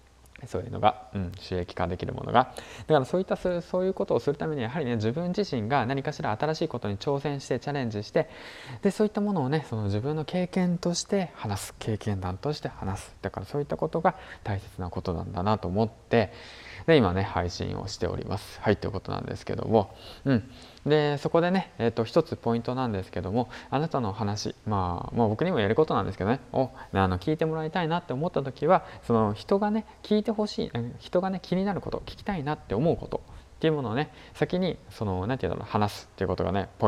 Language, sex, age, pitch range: Japanese, male, 20-39, 100-155 Hz